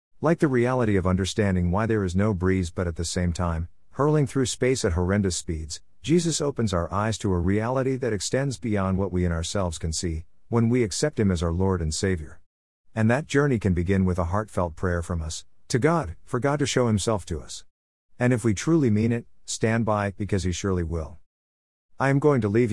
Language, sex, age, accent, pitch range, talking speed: English, male, 50-69, American, 90-120 Hz, 220 wpm